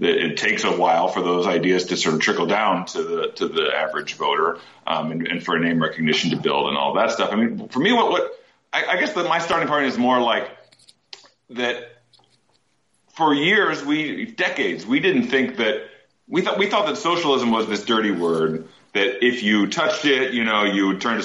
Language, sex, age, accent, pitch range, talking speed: English, male, 40-59, American, 90-150 Hz, 225 wpm